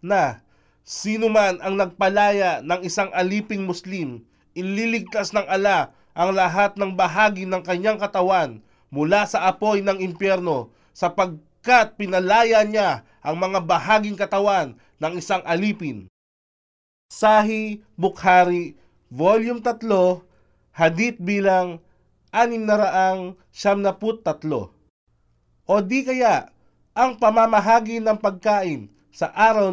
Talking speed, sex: 100 wpm, male